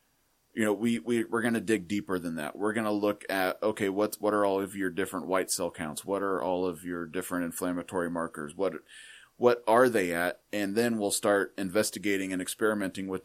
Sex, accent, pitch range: male, American, 95-110 Hz